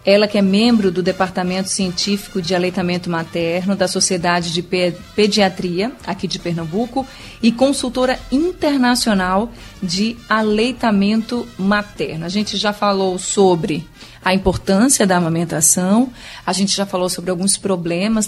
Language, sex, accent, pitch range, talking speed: Portuguese, female, Brazilian, 180-220 Hz, 130 wpm